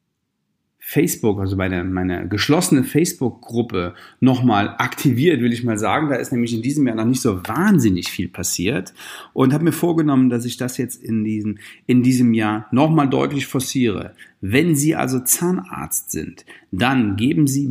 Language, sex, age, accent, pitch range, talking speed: German, male, 40-59, German, 110-150 Hz, 165 wpm